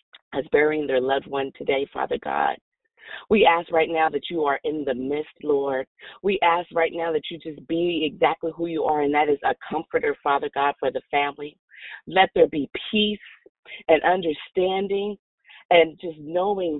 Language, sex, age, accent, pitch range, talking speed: English, female, 40-59, American, 150-200 Hz, 180 wpm